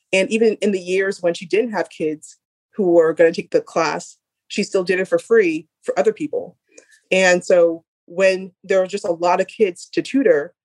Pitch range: 175-215 Hz